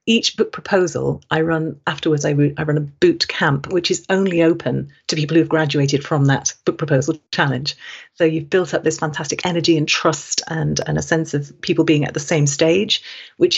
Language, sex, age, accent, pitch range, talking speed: English, female, 40-59, British, 150-175 Hz, 210 wpm